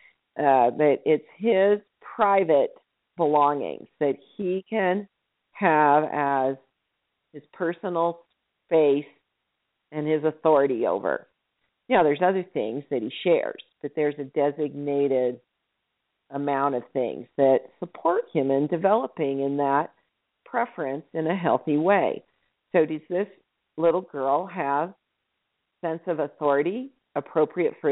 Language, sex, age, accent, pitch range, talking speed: English, female, 50-69, American, 140-180 Hz, 120 wpm